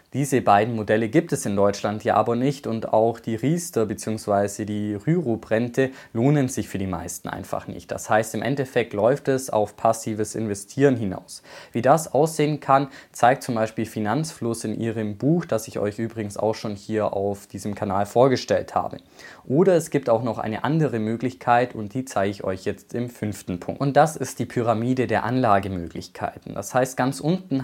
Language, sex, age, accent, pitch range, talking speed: German, male, 20-39, German, 105-135 Hz, 185 wpm